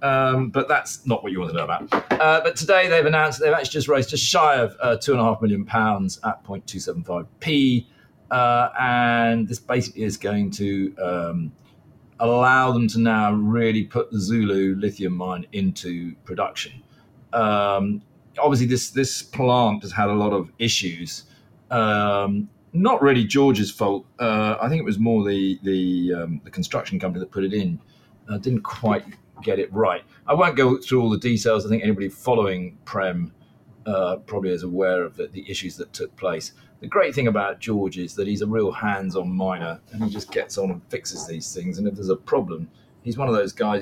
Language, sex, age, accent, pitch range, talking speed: English, male, 40-59, British, 100-135 Hz, 190 wpm